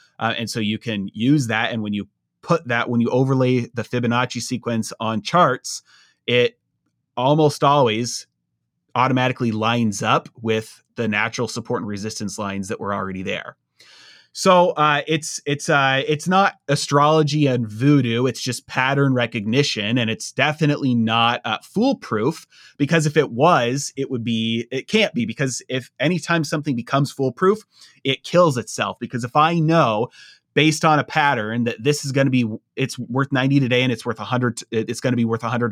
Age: 30-49